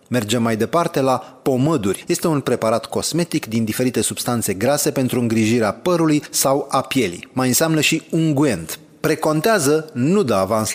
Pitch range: 120-160 Hz